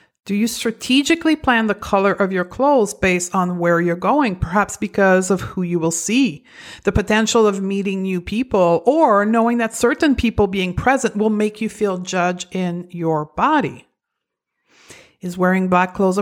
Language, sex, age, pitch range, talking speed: English, female, 50-69, 185-245 Hz, 170 wpm